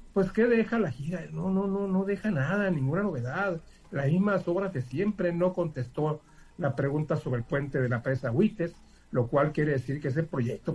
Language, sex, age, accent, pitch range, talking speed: Spanish, male, 50-69, Mexican, 135-175 Hz, 200 wpm